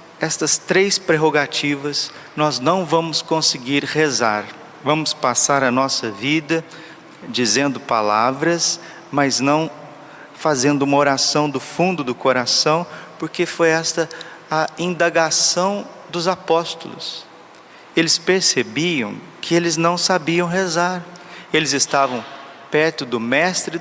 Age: 40-59